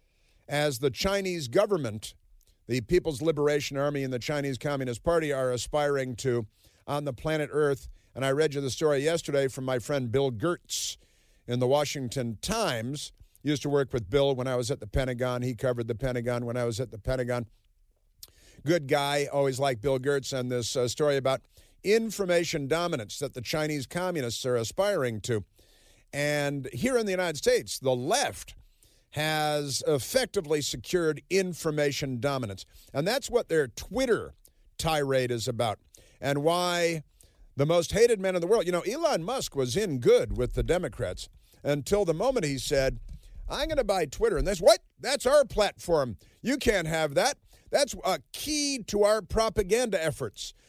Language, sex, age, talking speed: English, male, 50-69, 170 wpm